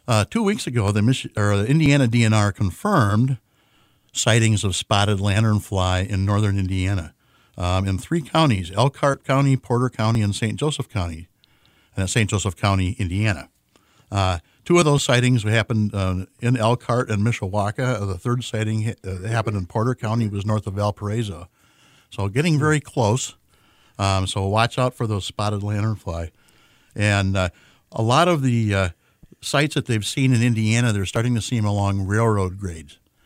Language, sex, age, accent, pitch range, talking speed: English, male, 60-79, American, 100-125 Hz, 165 wpm